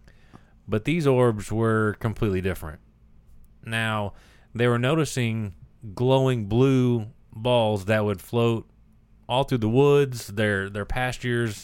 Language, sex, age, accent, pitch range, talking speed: English, male, 30-49, American, 105-125 Hz, 120 wpm